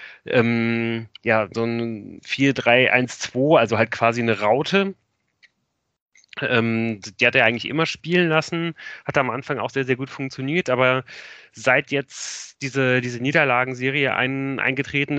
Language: German